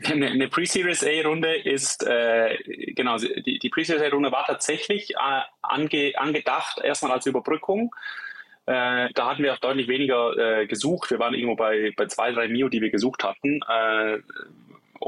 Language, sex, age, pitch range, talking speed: German, male, 20-39, 120-145 Hz, 145 wpm